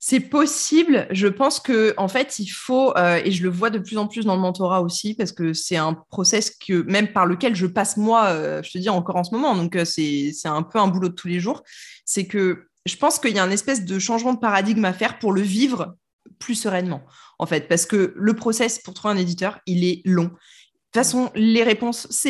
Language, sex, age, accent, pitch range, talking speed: French, female, 20-39, French, 175-230 Hz, 250 wpm